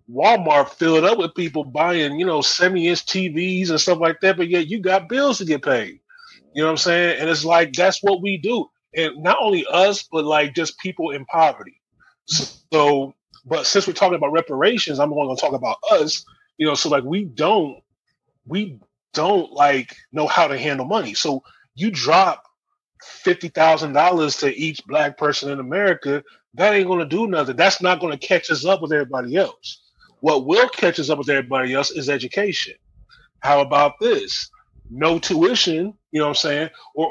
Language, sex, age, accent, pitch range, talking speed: English, male, 30-49, American, 145-180 Hz, 190 wpm